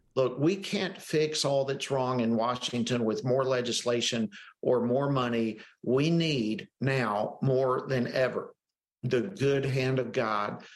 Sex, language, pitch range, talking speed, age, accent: male, English, 120-150 Hz, 145 wpm, 50-69, American